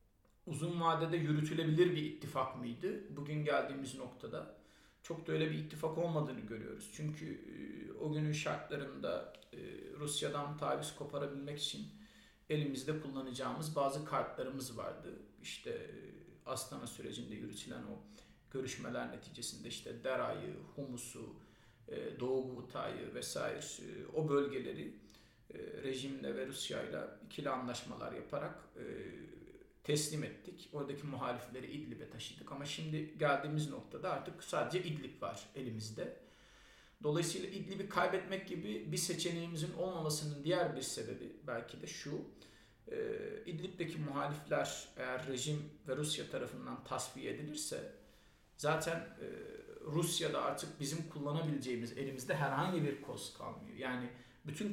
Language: Turkish